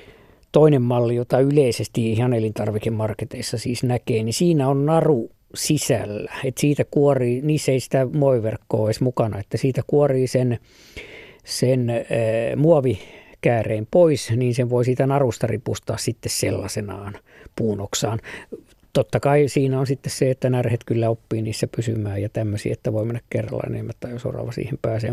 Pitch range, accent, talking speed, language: 115-140 Hz, native, 150 wpm, Finnish